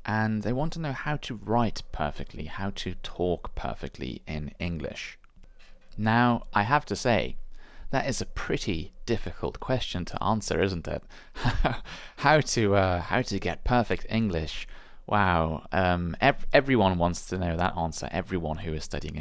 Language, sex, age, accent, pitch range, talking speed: English, male, 30-49, British, 85-115 Hz, 160 wpm